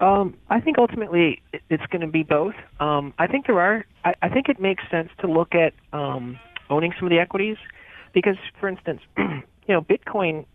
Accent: American